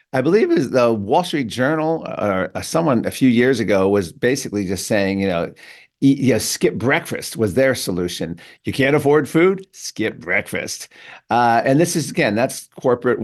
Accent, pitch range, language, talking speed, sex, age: American, 110-145 Hz, English, 170 wpm, male, 50-69